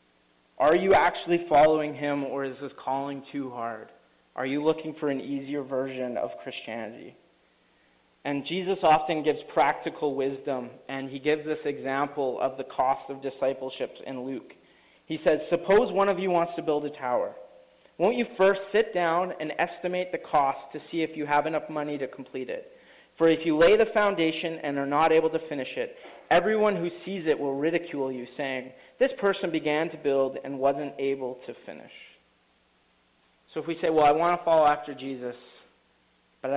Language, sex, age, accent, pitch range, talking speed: English, male, 30-49, American, 125-160 Hz, 180 wpm